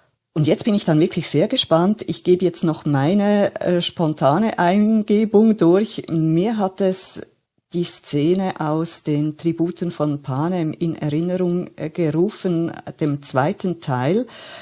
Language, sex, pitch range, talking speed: German, female, 140-175 Hz, 140 wpm